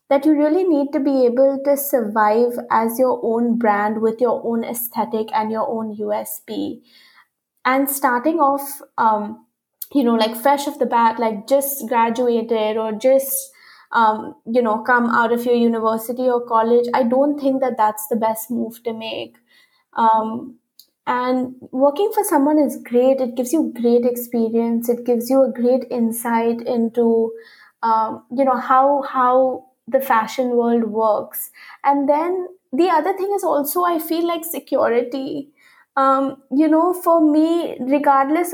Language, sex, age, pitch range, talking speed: English, female, 20-39, 235-290 Hz, 160 wpm